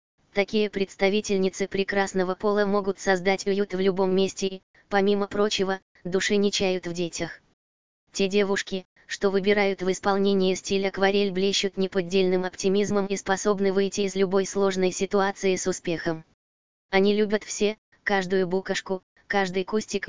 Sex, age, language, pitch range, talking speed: female, 20-39, Russian, 185-200 Hz, 135 wpm